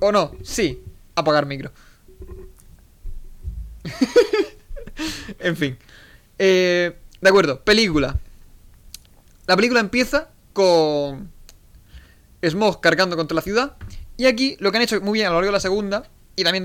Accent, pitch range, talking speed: Spanish, 155-235 Hz, 130 wpm